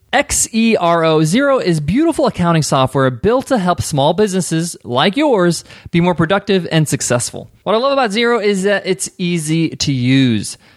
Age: 20-39